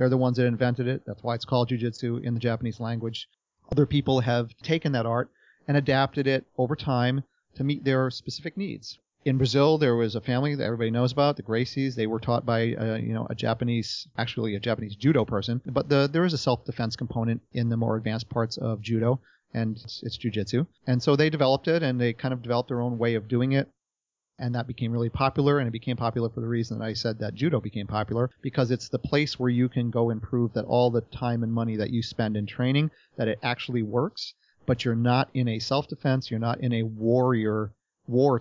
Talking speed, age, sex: 225 wpm, 40-59, male